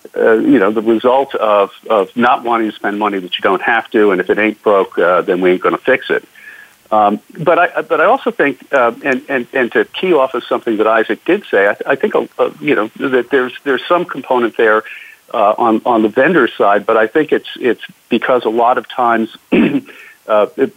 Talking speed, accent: 230 wpm, American